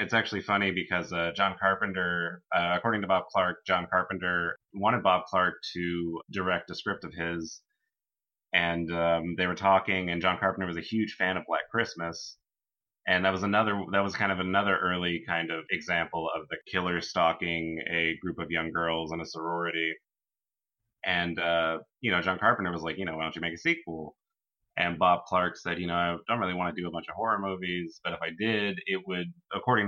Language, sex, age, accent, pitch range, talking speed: English, male, 30-49, American, 85-95 Hz, 205 wpm